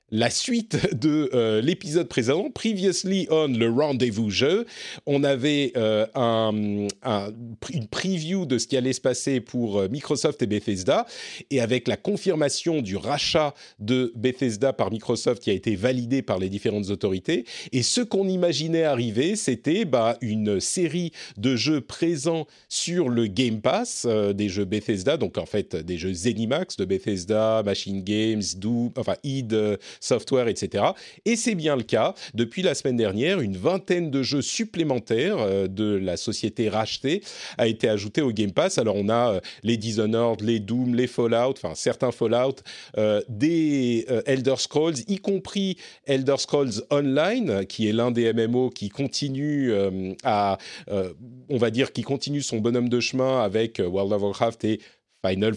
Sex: male